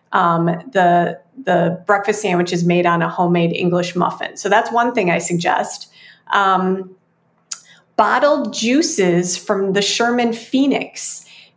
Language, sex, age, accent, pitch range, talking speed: English, female, 30-49, American, 180-220 Hz, 130 wpm